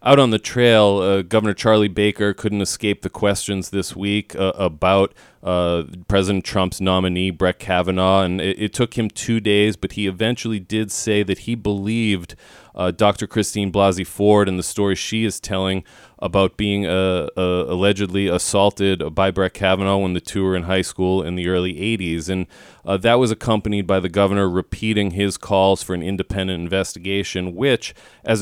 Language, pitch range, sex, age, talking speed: English, 90-105 Hz, male, 30-49, 180 wpm